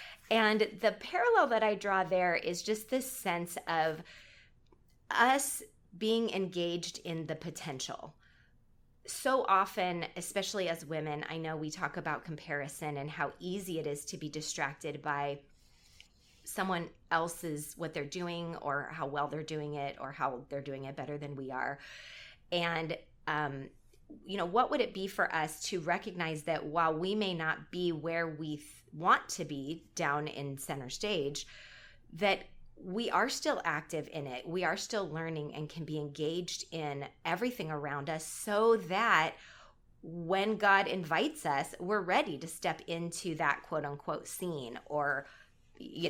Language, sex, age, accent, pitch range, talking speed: English, female, 20-39, American, 150-185 Hz, 160 wpm